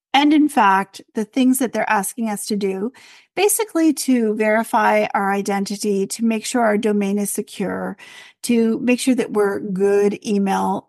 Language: English